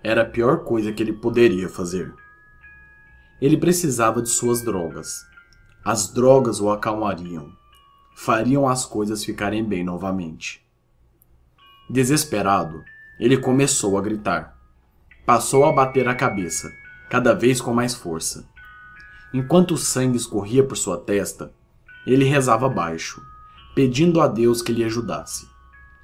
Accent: Brazilian